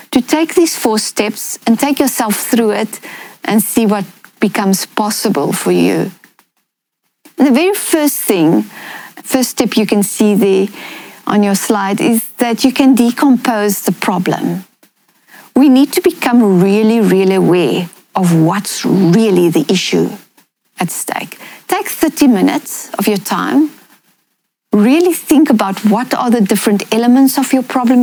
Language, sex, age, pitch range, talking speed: English, female, 40-59, 200-265 Hz, 150 wpm